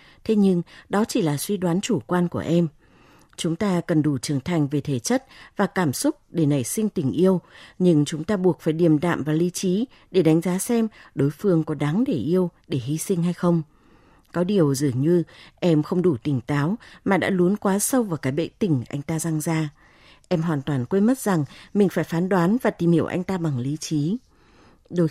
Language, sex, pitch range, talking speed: Vietnamese, female, 150-195 Hz, 225 wpm